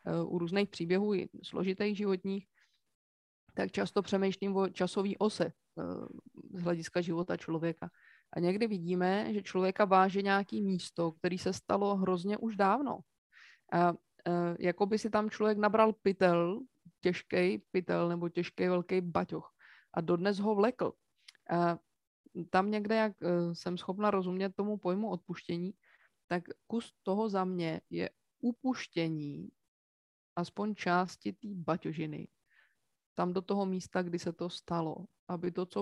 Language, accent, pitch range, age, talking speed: Czech, native, 175-200 Hz, 20-39, 135 wpm